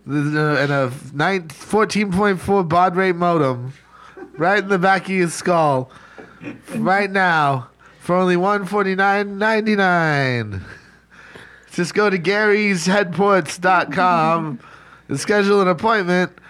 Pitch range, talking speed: 170-200 Hz, 95 wpm